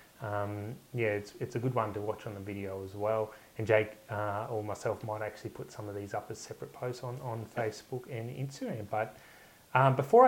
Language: English